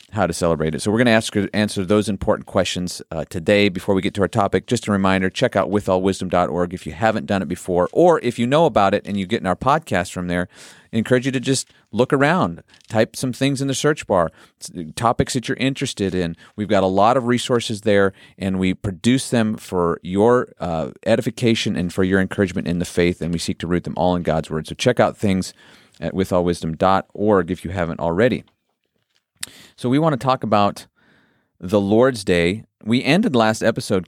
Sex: male